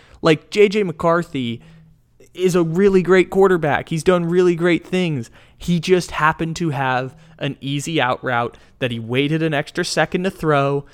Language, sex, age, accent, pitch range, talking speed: English, male, 20-39, American, 125-165 Hz, 165 wpm